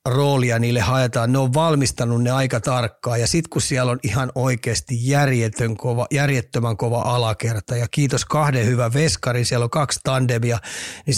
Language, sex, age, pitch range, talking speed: Finnish, male, 30-49, 120-140 Hz, 160 wpm